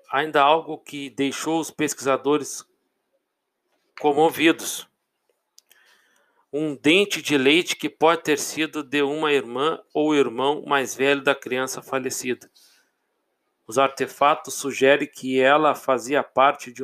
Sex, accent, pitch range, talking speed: male, Brazilian, 135-155 Hz, 120 wpm